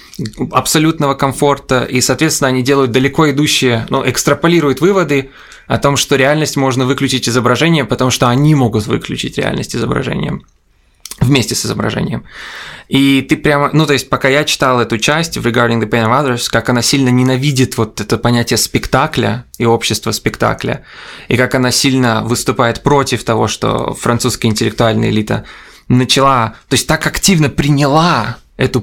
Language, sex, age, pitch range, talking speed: Russian, male, 20-39, 125-150 Hz, 150 wpm